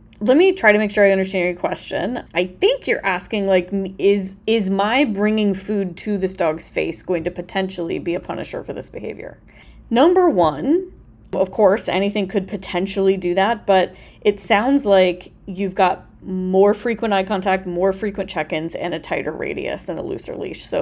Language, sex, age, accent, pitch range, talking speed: English, female, 20-39, American, 185-220 Hz, 185 wpm